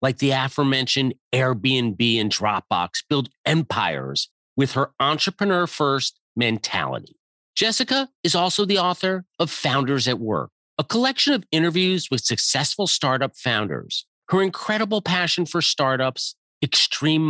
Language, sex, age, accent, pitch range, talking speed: English, male, 40-59, American, 110-155 Hz, 120 wpm